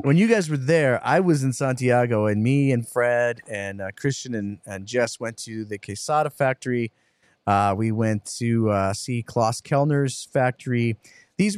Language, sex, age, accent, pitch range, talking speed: English, male, 30-49, American, 115-160 Hz, 175 wpm